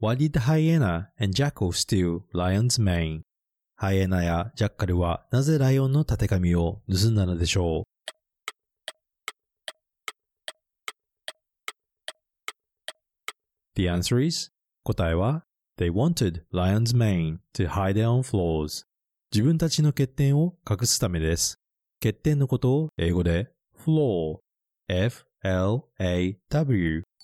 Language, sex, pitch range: Japanese, male, 90-140 Hz